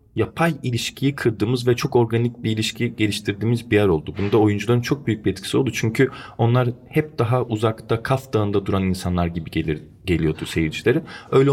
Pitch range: 100-125 Hz